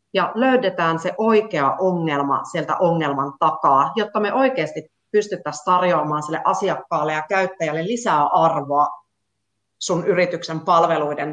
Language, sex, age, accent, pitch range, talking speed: Finnish, female, 30-49, native, 155-210 Hz, 115 wpm